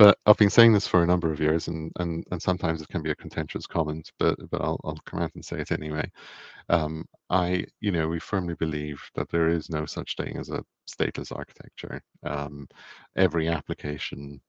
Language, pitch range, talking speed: English, 70-85 Hz, 205 wpm